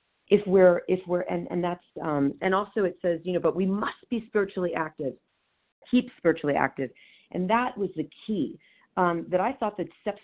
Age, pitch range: 40-59, 155-205 Hz